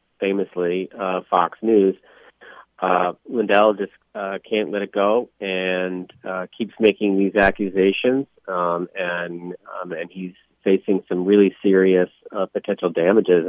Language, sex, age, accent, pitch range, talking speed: English, male, 40-59, American, 85-100 Hz, 135 wpm